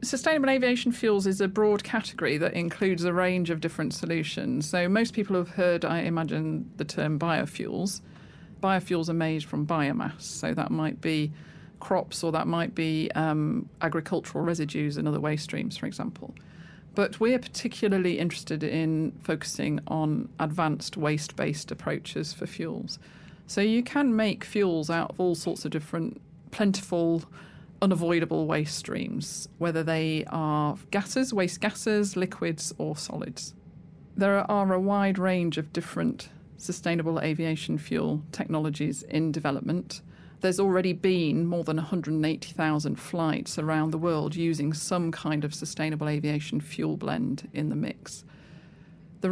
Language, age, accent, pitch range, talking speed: English, 40-59, British, 155-190 Hz, 145 wpm